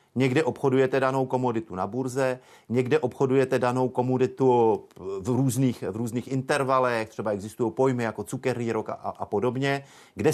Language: Czech